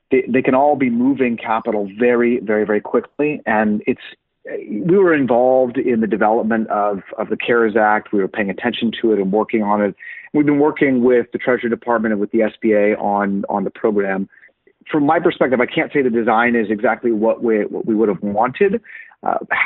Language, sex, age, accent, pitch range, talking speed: English, male, 30-49, American, 105-125 Hz, 205 wpm